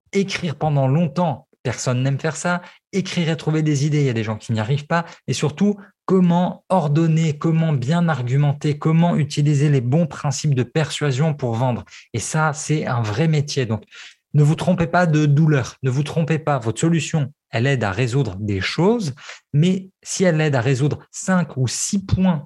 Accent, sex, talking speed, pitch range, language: French, male, 195 wpm, 125-160 Hz, French